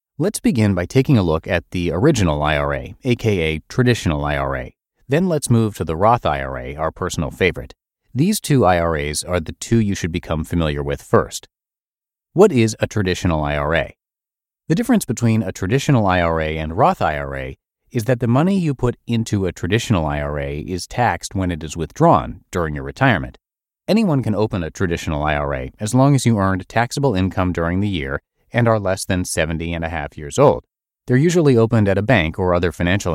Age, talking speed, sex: 30-49, 185 wpm, male